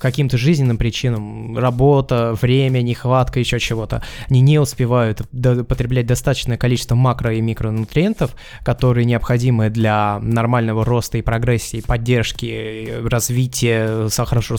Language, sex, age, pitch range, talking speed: Russian, male, 20-39, 115-140 Hz, 115 wpm